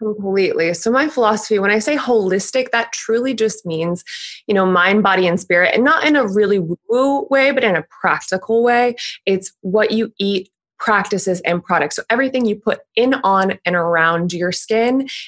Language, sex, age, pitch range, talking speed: English, female, 20-39, 180-230 Hz, 185 wpm